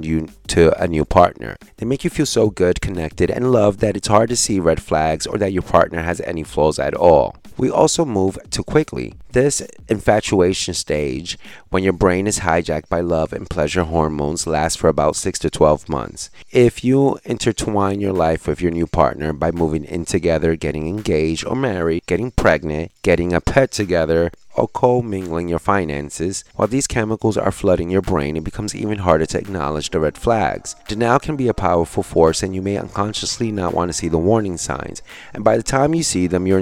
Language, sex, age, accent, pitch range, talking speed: English, male, 30-49, American, 80-105 Hz, 200 wpm